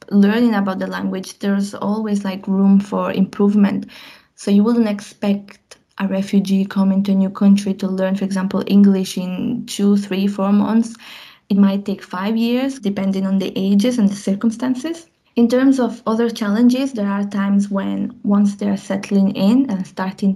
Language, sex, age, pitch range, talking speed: English, female, 20-39, 195-225 Hz, 170 wpm